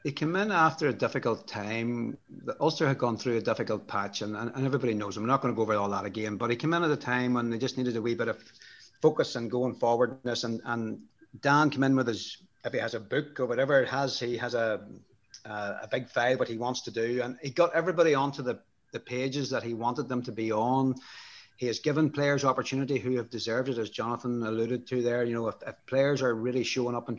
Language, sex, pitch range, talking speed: English, male, 120-145 Hz, 250 wpm